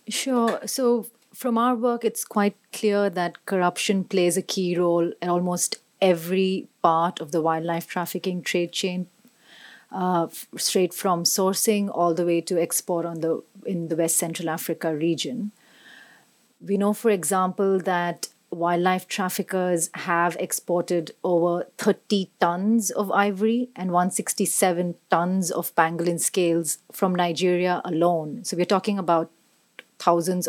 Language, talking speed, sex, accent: English, 135 wpm, female, Indian